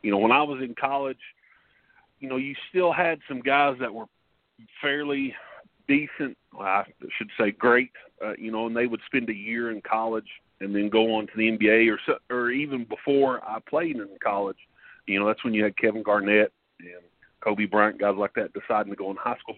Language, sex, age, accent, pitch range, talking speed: English, male, 40-59, American, 105-135 Hz, 210 wpm